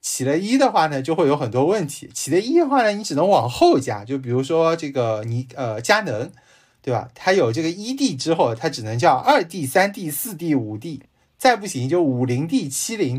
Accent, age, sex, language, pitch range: native, 20-39, male, Chinese, 120-165 Hz